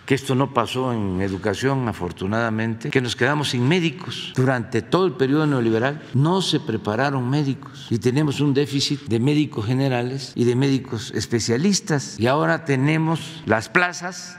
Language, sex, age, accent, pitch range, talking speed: Spanish, male, 50-69, Mexican, 110-150 Hz, 155 wpm